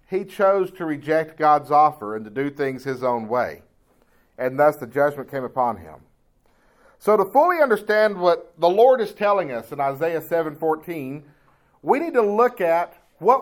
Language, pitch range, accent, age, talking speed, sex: English, 135-190 Hz, American, 50-69, 180 wpm, male